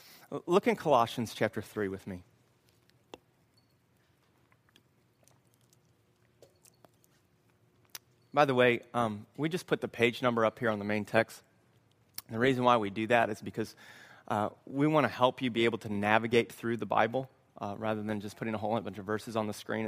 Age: 30-49